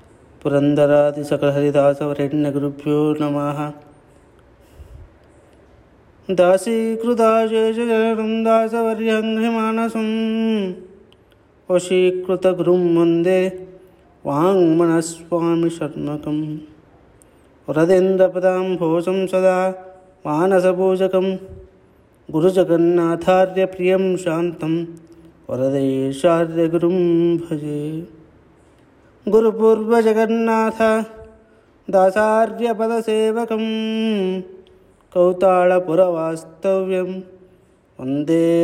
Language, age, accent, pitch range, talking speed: Kannada, 20-39, native, 150-190 Hz, 30 wpm